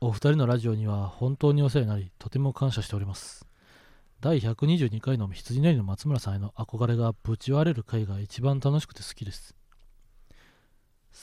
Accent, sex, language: native, male, Japanese